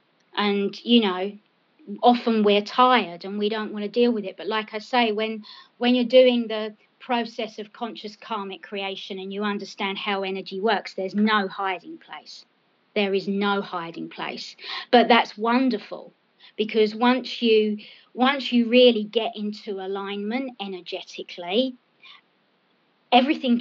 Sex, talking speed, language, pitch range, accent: female, 145 wpm, English, 205-245 Hz, British